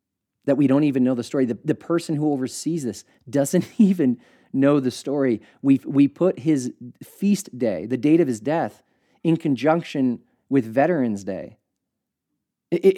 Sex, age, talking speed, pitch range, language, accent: male, 30-49, 160 wpm, 120-150 Hz, English, American